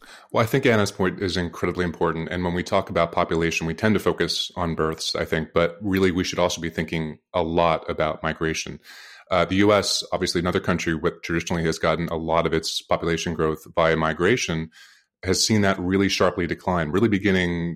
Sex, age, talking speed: male, 30-49, 200 wpm